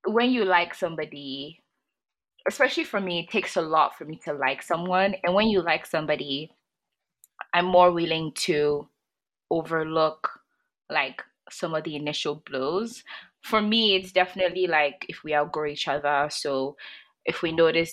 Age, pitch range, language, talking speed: 20-39, 145-180 Hz, English, 155 wpm